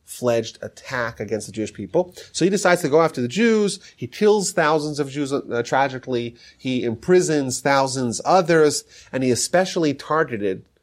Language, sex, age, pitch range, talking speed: English, male, 30-49, 110-145 Hz, 160 wpm